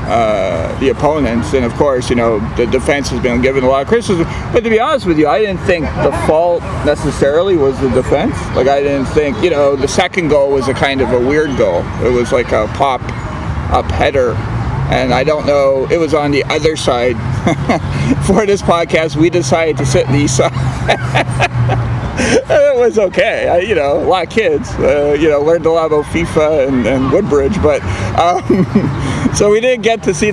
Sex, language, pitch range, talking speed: male, English, 130-165 Hz, 200 wpm